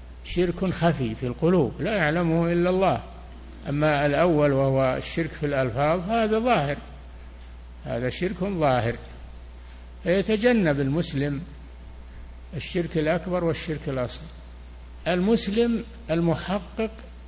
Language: Arabic